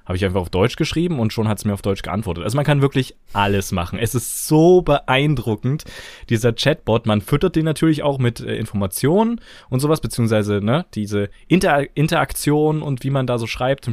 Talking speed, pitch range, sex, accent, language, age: 200 wpm, 105-145 Hz, male, German, German, 20-39